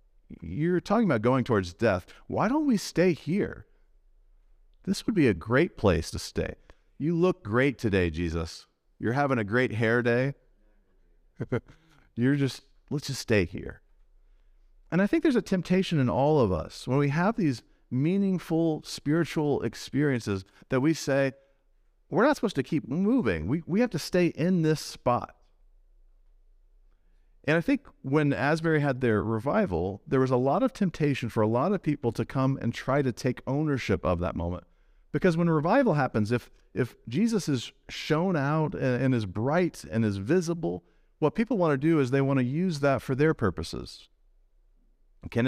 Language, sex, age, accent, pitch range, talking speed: English, male, 40-59, American, 110-160 Hz, 170 wpm